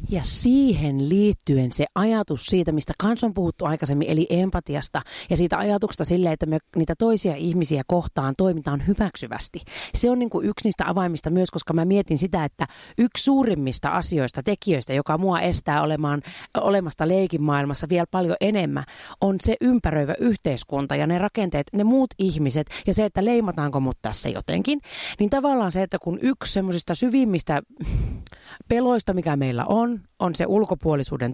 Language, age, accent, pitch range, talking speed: Finnish, 40-59, native, 150-205 Hz, 155 wpm